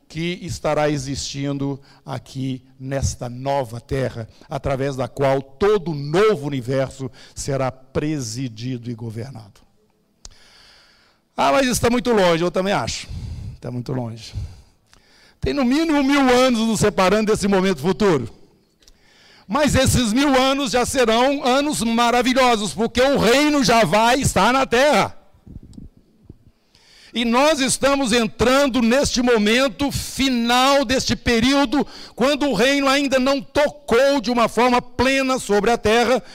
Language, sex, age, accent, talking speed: Portuguese, male, 60-79, Brazilian, 125 wpm